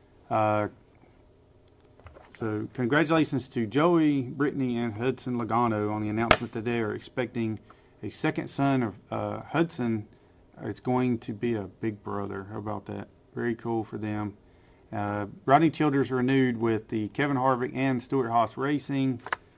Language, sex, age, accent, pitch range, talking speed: English, male, 40-59, American, 105-125 Hz, 145 wpm